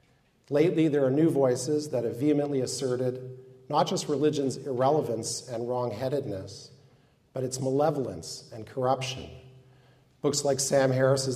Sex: male